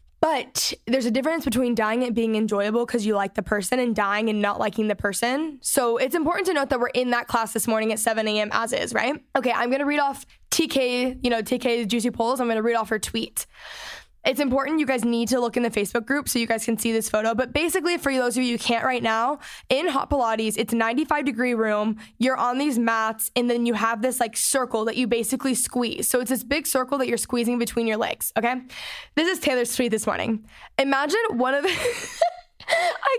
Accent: American